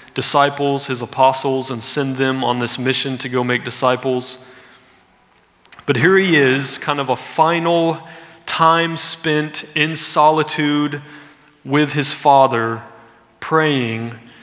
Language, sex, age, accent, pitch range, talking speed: English, male, 30-49, American, 130-155 Hz, 120 wpm